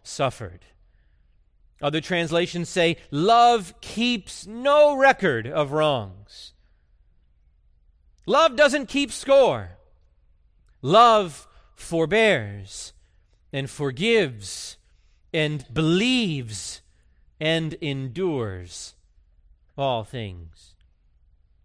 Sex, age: male, 30-49